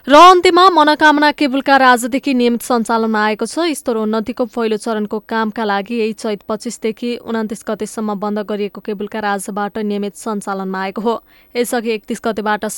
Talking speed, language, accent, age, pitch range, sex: 175 wpm, English, Indian, 20-39, 210-250 Hz, female